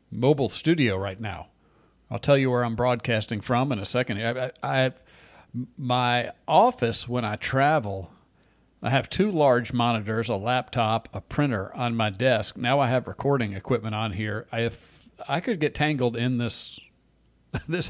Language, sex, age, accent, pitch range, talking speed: English, male, 40-59, American, 110-135 Hz, 170 wpm